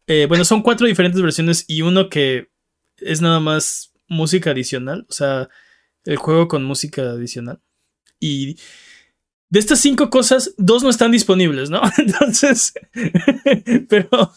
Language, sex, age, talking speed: Spanish, male, 20-39, 140 wpm